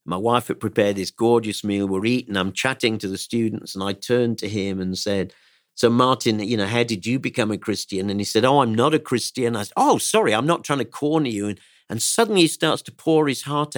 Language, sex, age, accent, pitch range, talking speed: English, male, 50-69, British, 110-155 Hz, 255 wpm